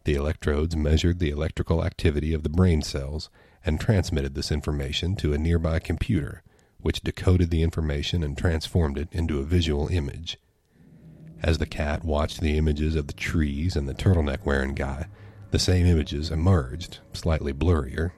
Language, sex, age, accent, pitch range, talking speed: English, male, 40-59, American, 80-105 Hz, 160 wpm